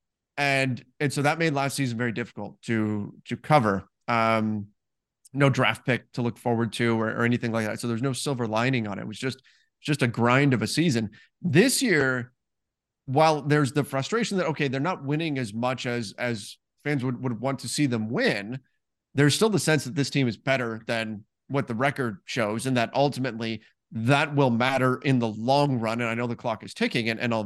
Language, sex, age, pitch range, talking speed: English, male, 30-49, 120-150 Hz, 215 wpm